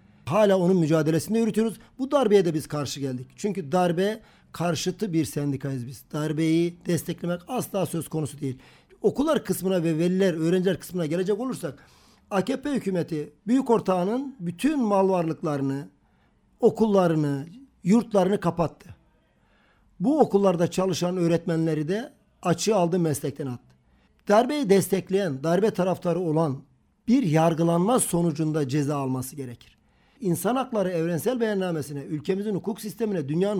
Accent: native